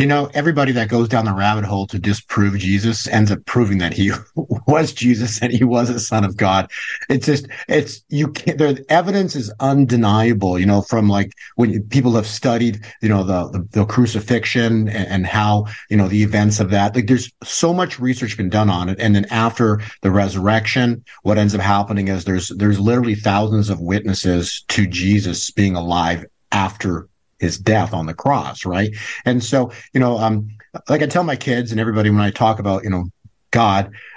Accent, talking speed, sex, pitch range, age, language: American, 195 wpm, male, 100-130 Hz, 50-69, English